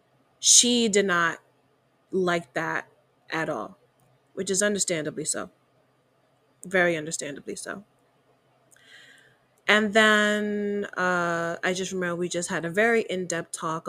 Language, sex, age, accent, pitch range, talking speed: English, female, 20-39, American, 160-195 Hz, 115 wpm